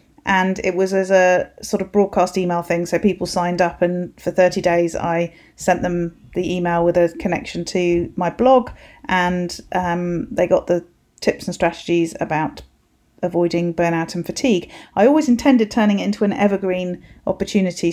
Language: English